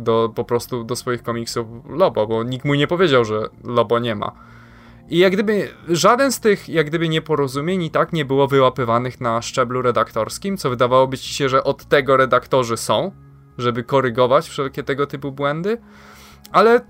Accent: native